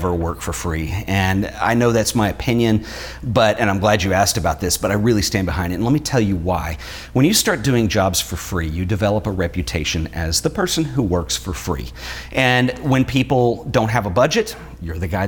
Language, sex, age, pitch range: English, male, 40-59, 90-115 Hz